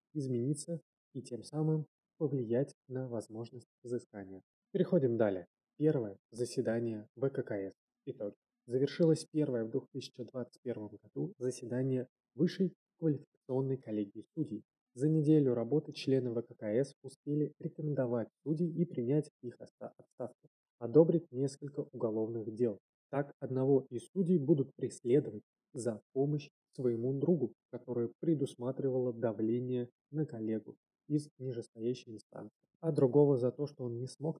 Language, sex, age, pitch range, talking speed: Russian, male, 20-39, 120-150 Hz, 115 wpm